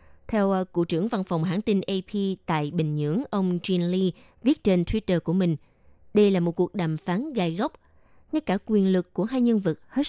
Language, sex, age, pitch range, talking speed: Vietnamese, female, 20-39, 170-220 Hz, 215 wpm